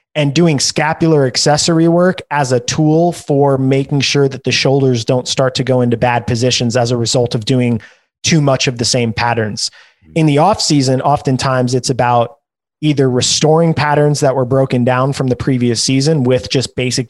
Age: 30-49